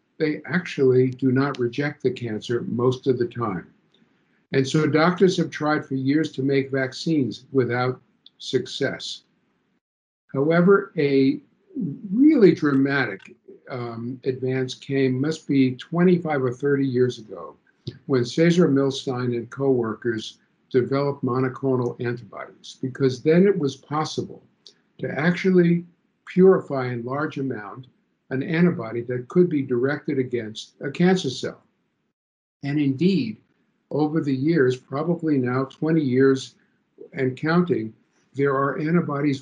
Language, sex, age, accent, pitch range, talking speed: English, male, 50-69, American, 125-155 Hz, 120 wpm